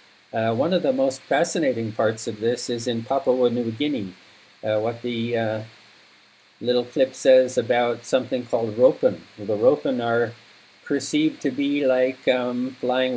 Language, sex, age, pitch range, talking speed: English, male, 50-69, 120-145 Hz, 155 wpm